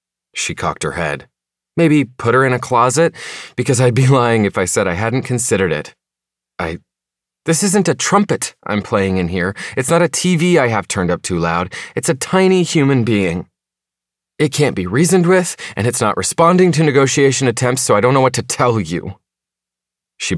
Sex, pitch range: male, 95-140 Hz